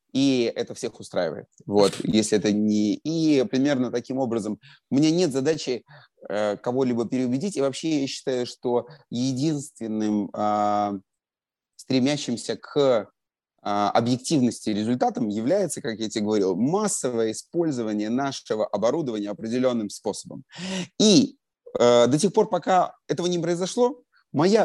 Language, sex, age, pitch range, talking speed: Russian, male, 30-49, 125-185 Hz, 125 wpm